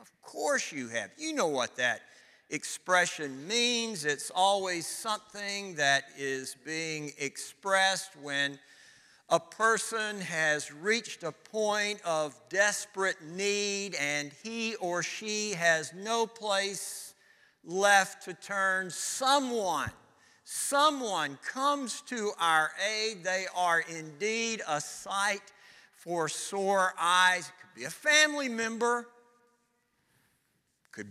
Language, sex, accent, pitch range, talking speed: English, male, American, 180-245 Hz, 110 wpm